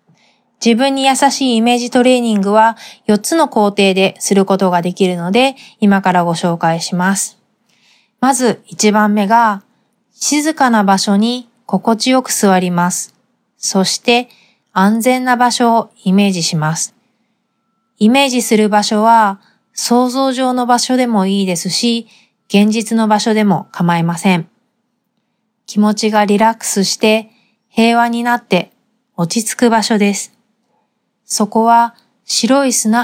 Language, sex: Japanese, female